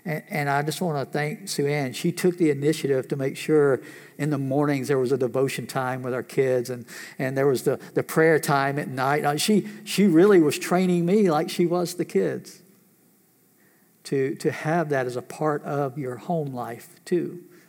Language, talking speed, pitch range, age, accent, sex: English, 200 wpm, 135-170 Hz, 60-79, American, male